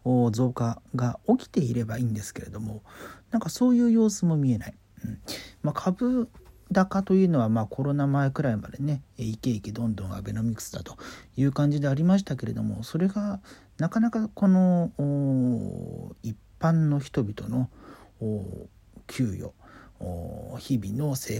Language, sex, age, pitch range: Japanese, male, 40-59, 110-155 Hz